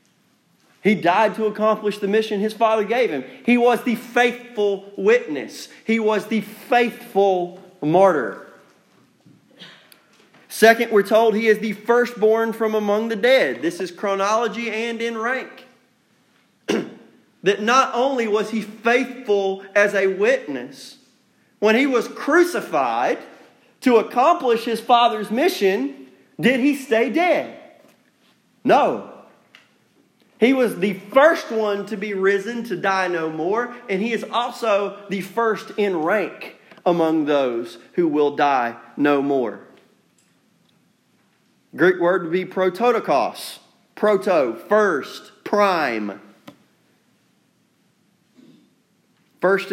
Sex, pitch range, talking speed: male, 185-230 Hz, 115 wpm